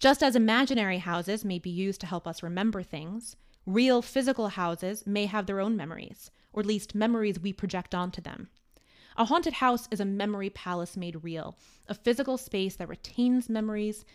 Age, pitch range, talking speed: 20-39, 190-240 Hz, 180 wpm